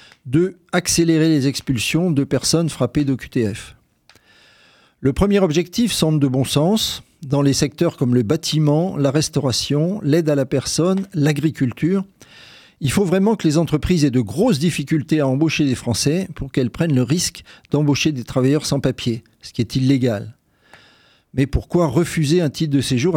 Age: 40-59